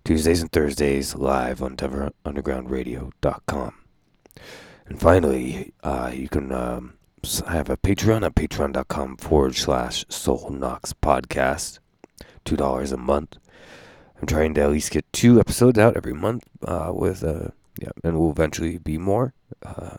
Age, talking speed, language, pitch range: 30-49, 140 wpm, English, 70-100 Hz